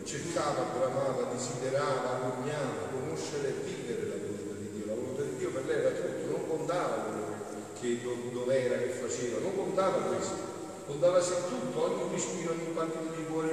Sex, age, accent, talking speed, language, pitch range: male, 40-59, native, 175 wpm, Italian, 125-190 Hz